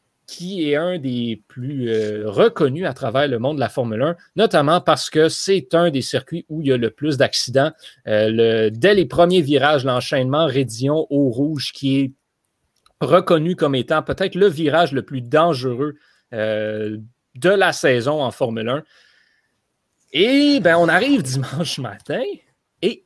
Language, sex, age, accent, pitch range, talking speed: French, male, 30-49, Canadian, 125-180 Hz, 165 wpm